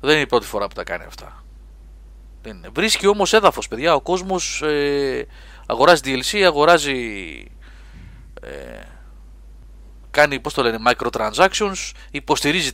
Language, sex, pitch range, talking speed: Greek, male, 105-160 Hz, 125 wpm